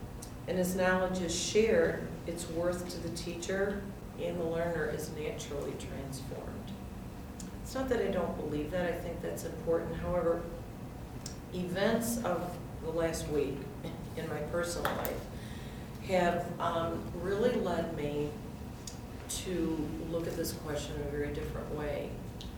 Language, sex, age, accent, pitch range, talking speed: English, female, 40-59, American, 145-175 Hz, 140 wpm